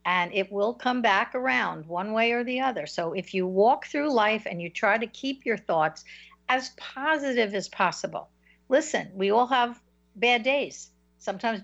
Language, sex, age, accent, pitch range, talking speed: English, female, 60-79, American, 180-235 Hz, 180 wpm